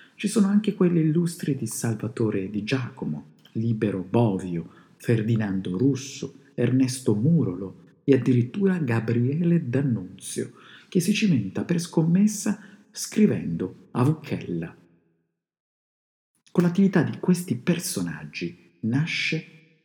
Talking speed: 100 wpm